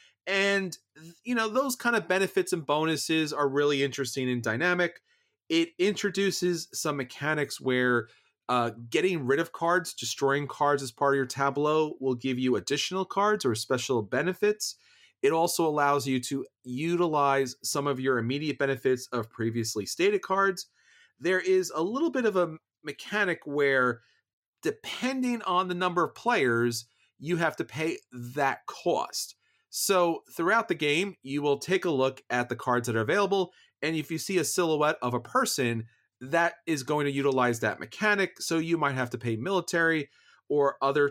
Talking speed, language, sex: 170 wpm, English, male